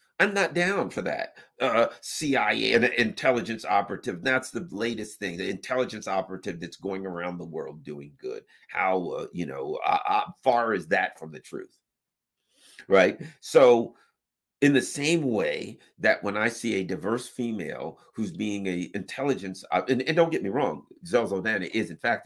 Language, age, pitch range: English, 50-69, 95-155 Hz